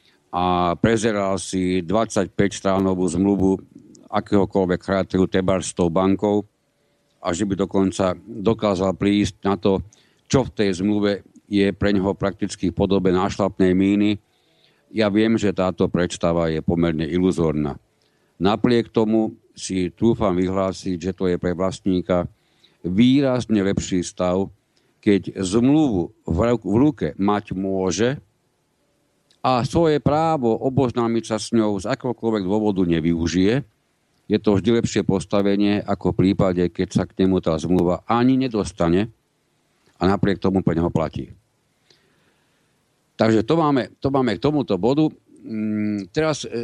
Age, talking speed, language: 60-79, 130 wpm, Slovak